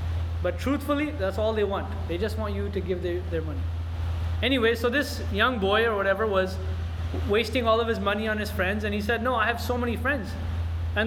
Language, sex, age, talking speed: English, male, 20-39, 220 wpm